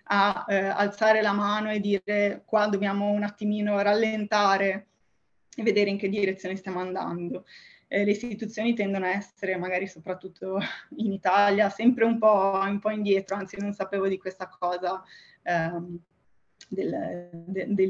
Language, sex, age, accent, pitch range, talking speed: Italian, female, 20-39, native, 185-210 Hz, 150 wpm